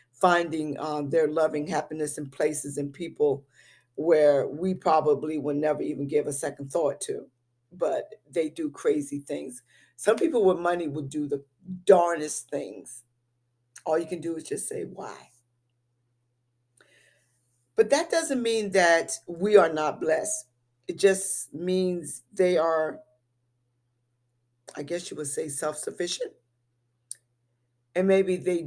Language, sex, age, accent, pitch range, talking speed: English, female, 50-69, American, 125-185 Hz, 135 wpm